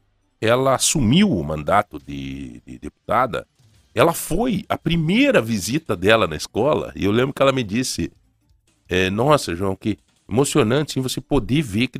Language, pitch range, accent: Portuguese, 95-130 Hz, Brazilian